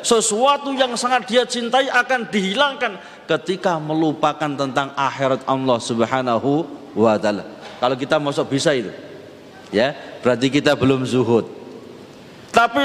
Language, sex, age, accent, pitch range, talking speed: Indonesian, male, 40-59, native, 140-235 Hz, 120 wpm